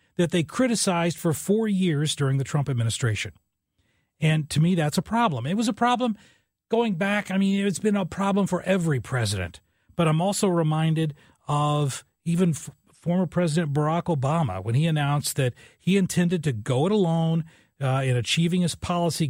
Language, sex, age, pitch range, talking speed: English, male, 40-59, 130-175 Hz, 175 wpm